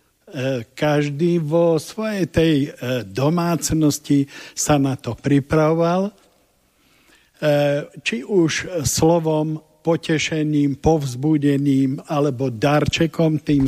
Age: 50-69